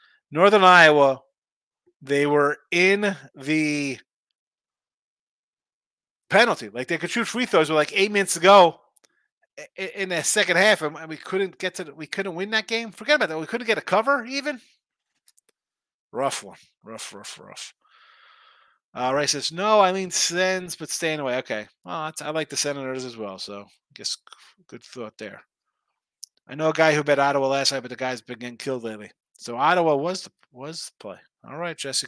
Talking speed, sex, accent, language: 185 wpm, male, American, English